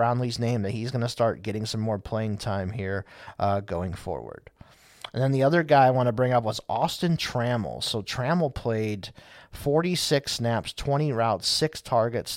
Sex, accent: male, American